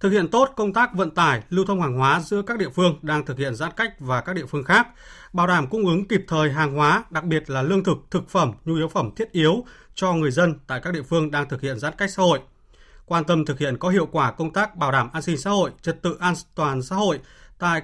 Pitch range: 145-190 Hz